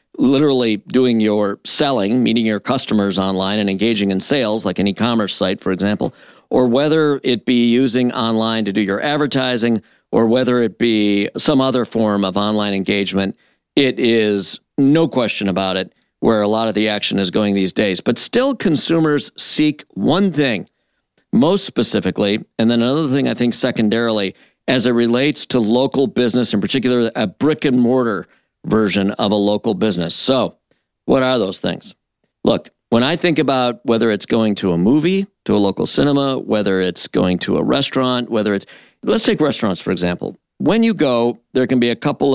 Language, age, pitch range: English, 50-69, 100-130 Hz